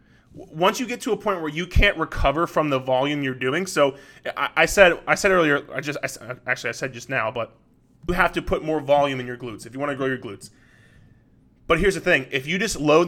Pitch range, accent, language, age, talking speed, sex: 135-175 Hz, American, English, 20-39, 255 wpm, male